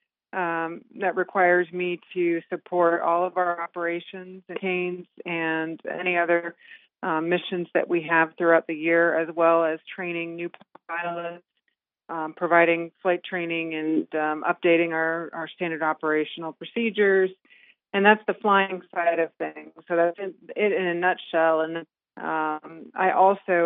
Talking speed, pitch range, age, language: 145 wpm, 160-180 Hz, 40-59, English